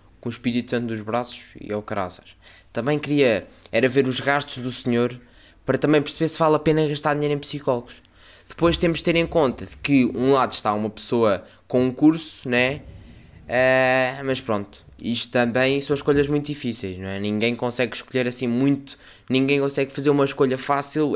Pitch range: 110-140 Hz